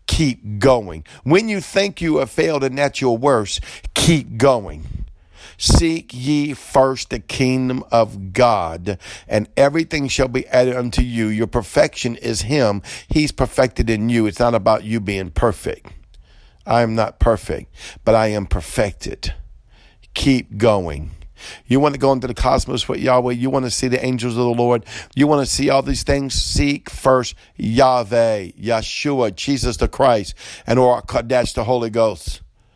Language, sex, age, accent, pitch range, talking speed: English, male, 50-69, American, 100-125 Hz, 165 wpm